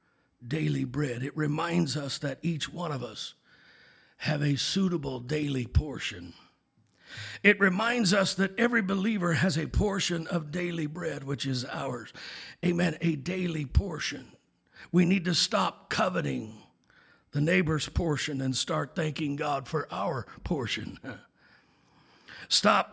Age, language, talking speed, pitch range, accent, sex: 60-79, English, 130 wpm, 150-180 Hz, American, male